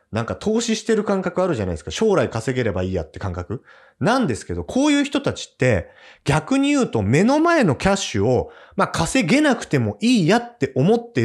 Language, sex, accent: Japanese, male, native